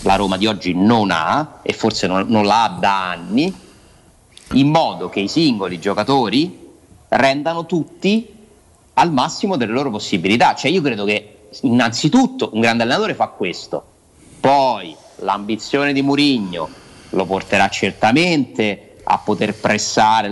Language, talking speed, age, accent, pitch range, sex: Italian, 135 wpm, 30-49, native, 100-145 Hz, male